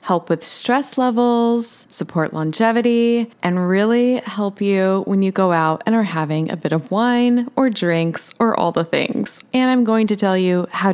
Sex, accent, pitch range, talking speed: female, American, 175-230 Hz, 185 wpm